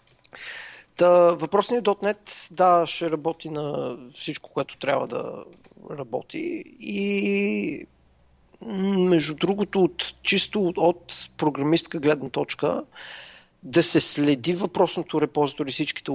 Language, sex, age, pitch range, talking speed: Bulgarian, male, 40-59, 145-180 Hz, 100 wpm